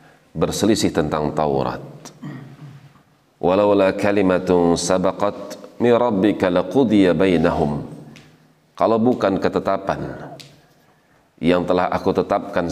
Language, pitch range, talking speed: Indonesian, 80-95 Hz, 95 wpm